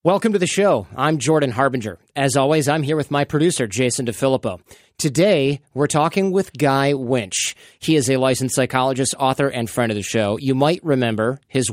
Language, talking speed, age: English, 190 wpm, 30-49